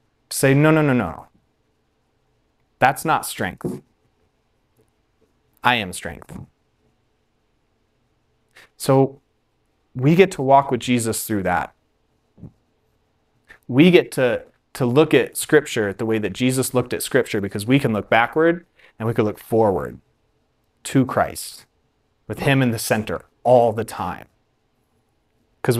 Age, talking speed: 30-49, 130 wpm